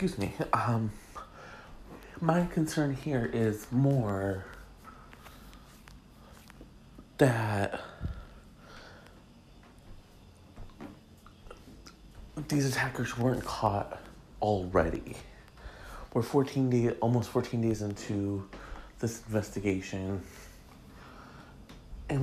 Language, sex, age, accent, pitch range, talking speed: English, male, 40-59, American, 100-125 Hz, 65 wpm